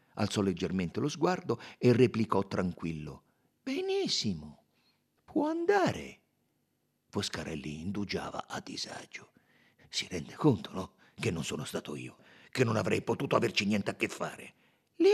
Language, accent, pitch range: Italian, native, 140-220 Hz